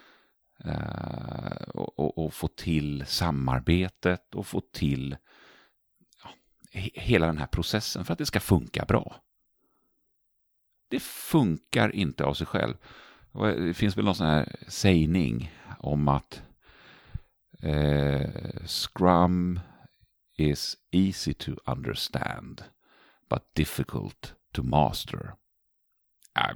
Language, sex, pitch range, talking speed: Swedish, male, 75-105 Hz, 100 wpm